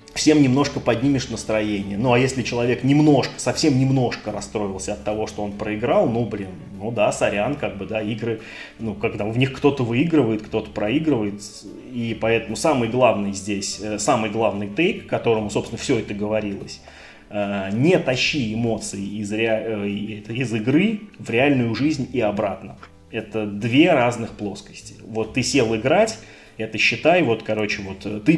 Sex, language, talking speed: male, Russian, 155 wpm